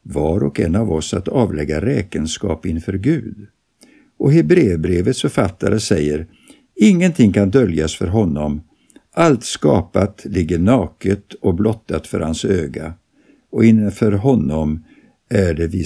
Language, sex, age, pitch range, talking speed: Swedish, male, 60-79, 85-125 Hz, 130 wpm